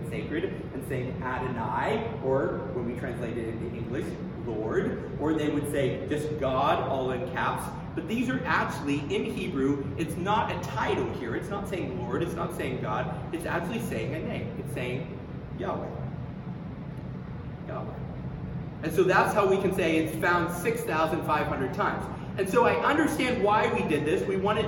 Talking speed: 180 wpm